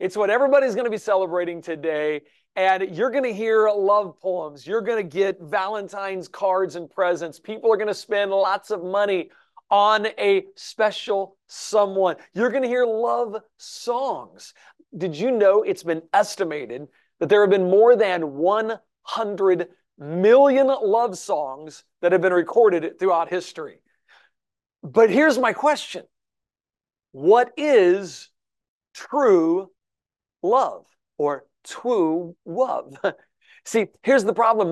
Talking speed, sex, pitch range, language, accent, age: 135 wpm, male, 175-225 Hz, English, American, 40-59